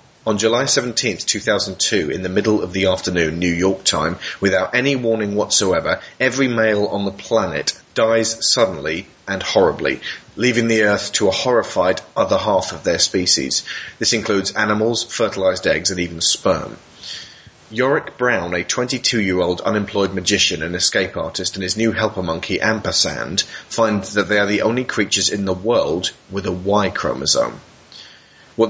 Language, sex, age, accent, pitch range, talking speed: English, male, 30-49, British, 95-115 Hz, 160 wpm